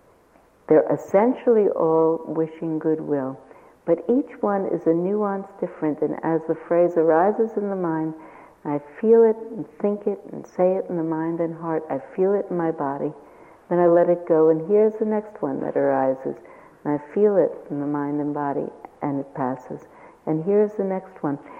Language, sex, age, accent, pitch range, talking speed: English, female, 60-79, American, 150-200 Hz, 190 wpm